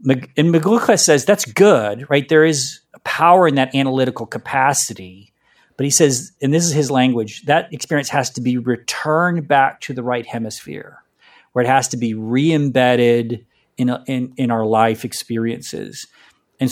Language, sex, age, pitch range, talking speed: English, male, 40-59, 120-145 Hz, 155 wpm